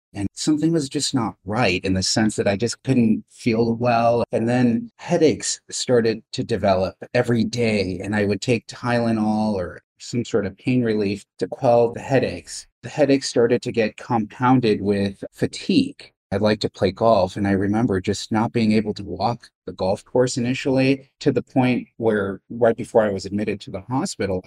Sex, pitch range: male, 105-125 Hz